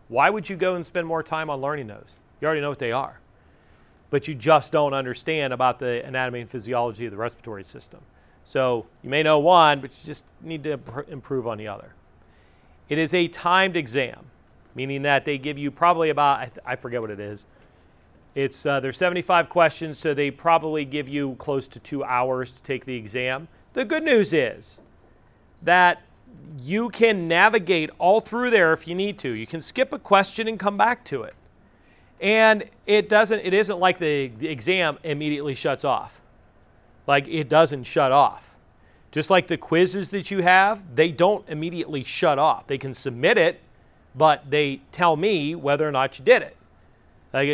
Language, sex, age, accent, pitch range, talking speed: English, male, 40-59, American, 130-170 Hz, 190 wpm